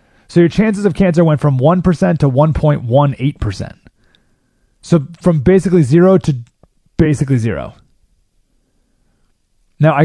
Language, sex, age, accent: English, male, 30-49, American